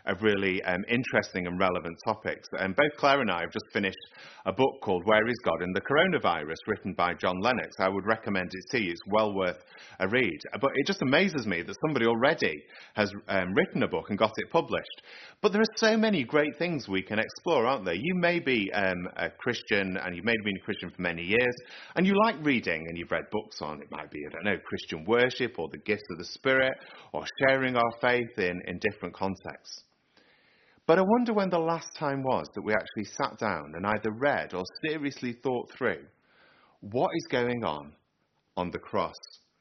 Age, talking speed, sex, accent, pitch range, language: 30-49, 215 wpm, male, British, 95-140 Hz, English